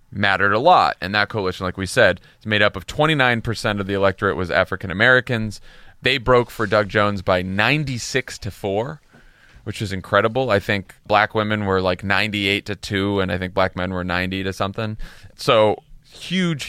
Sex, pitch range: male, 100-130 Hz